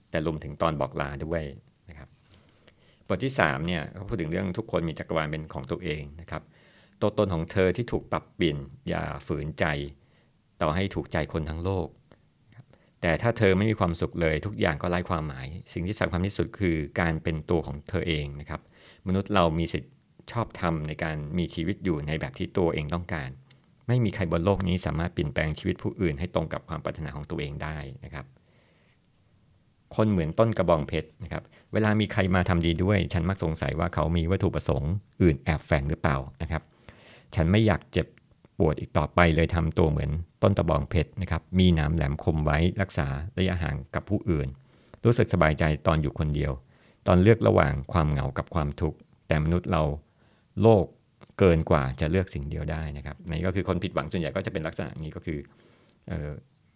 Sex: male